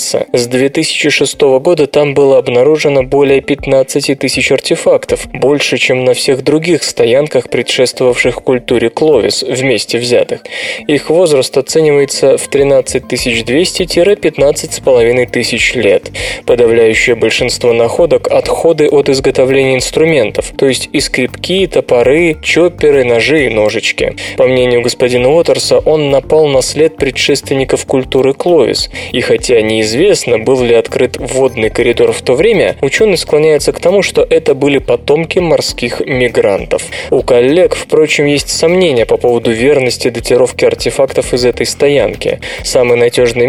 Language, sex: Russian, male